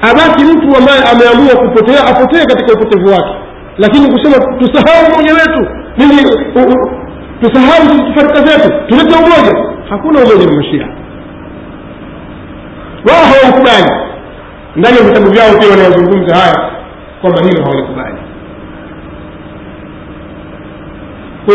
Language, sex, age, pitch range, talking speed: Swahili, male, 40-59, 170-255 Hz, 95 wpm